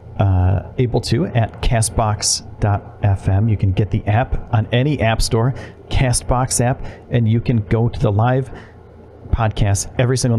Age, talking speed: 40-59, 150 wpm